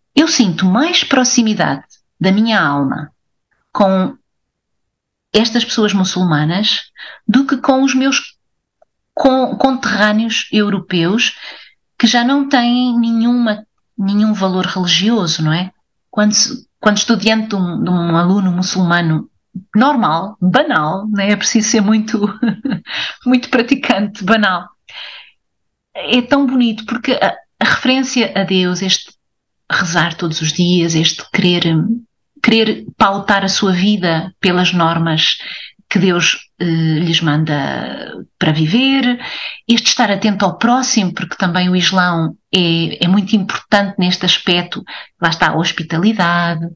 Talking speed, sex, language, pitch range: 120 wpm, female, Portuguese, 180-240 Hz